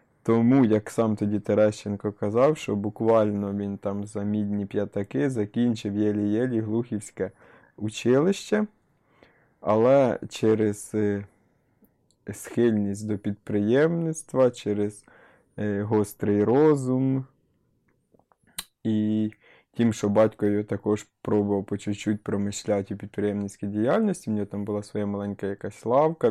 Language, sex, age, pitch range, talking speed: Ukrainian, male, 20-39, 105-115 Hz, 105 wpm